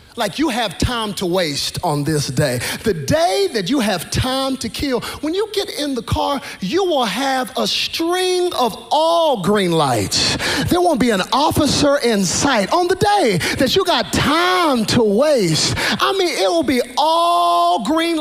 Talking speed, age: 180 wpm, 40-59